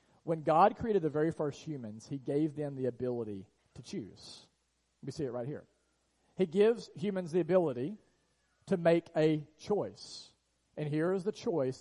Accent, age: American, 40-59